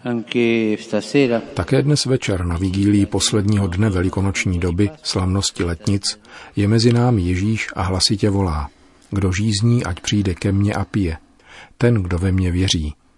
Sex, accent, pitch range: male, native, 85-105 Hz